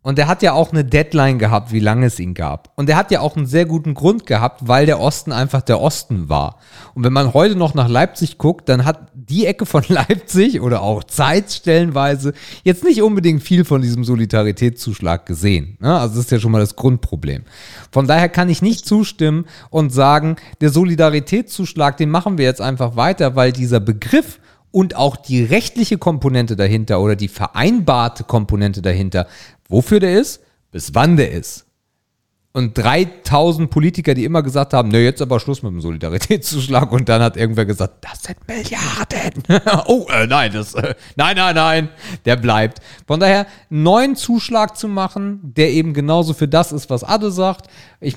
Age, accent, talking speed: 40-59, German, 185 wpm